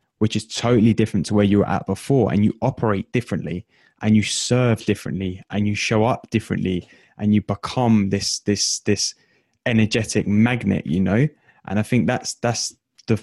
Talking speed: 175 wpm